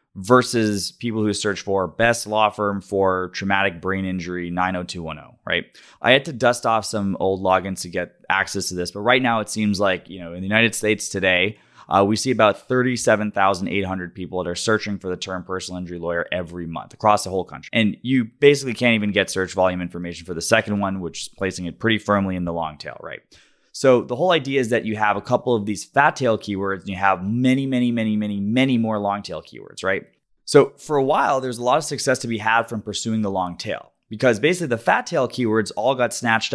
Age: 20-39